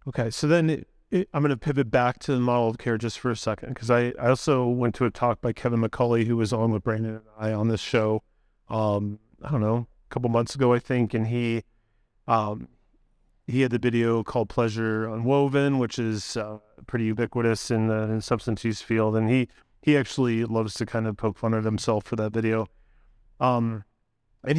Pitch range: 110-130 Hz